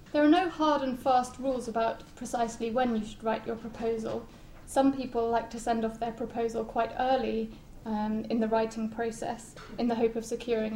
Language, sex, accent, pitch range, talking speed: English, female, British, 225-250 Hz, 195 wpm